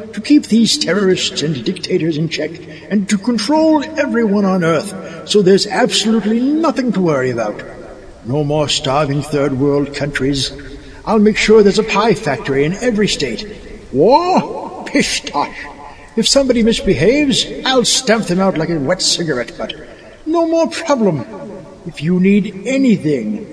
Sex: male